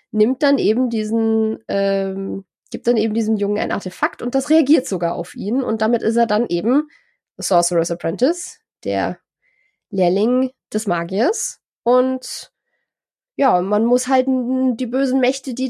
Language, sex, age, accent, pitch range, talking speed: German, female, 20-39, German, 215-280 Hz, 155 wpm